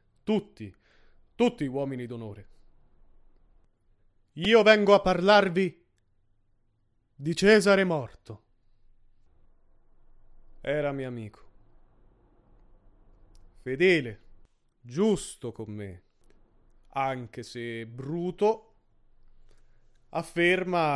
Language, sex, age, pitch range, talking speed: Italian, male, 30-49, 115-180 Hz, 65 wpm